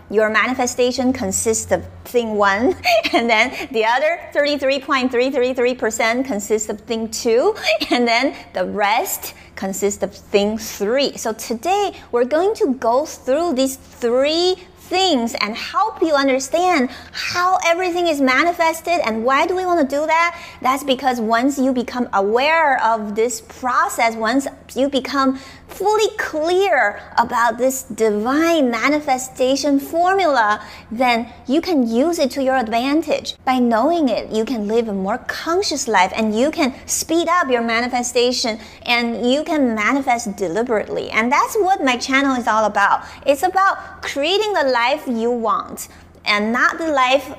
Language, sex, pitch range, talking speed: English, female, 230-315 Hz, 150 wpm